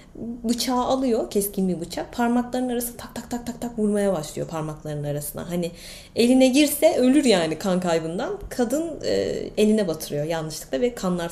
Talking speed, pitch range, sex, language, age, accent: 160 wpm, 165-220 Hz, female, Turkish, 30-49, native